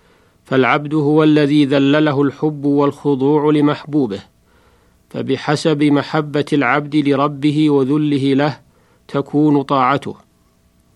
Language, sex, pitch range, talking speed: Arabic, male, 140-155 Hz, 80 wpm